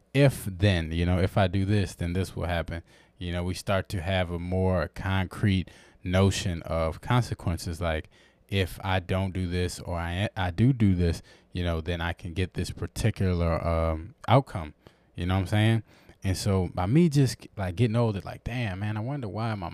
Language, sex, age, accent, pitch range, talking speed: English, male, 20-39, American, 90-120 Hz, 200 wpm